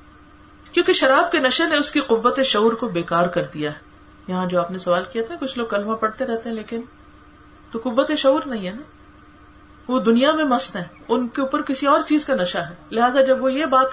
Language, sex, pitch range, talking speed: Urdu, female, 175-260 Hz, 230 wpm